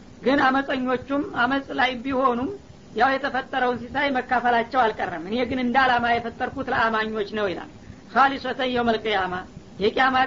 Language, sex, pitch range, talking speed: Amharic, female, 235-260 Hz, 130 wpm